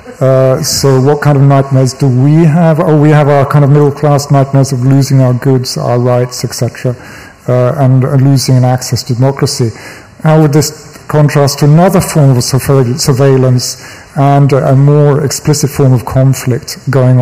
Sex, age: male, 50-69